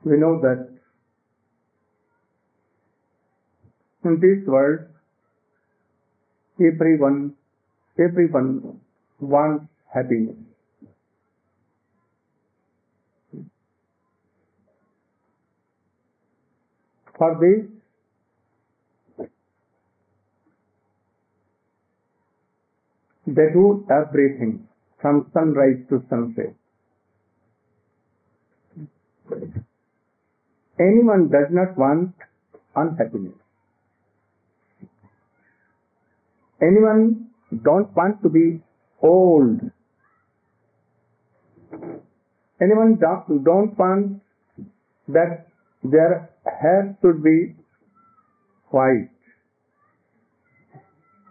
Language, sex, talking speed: English, male, 45 wpm